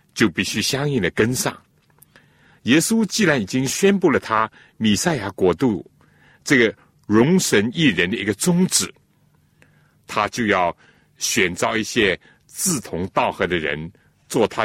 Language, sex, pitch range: Chinese, male, 110-175 Hz